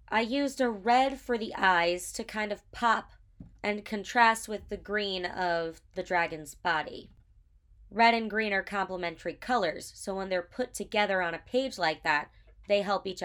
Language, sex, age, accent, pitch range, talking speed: English, female, 20-39, American, 185-245 Hz, 175 wpm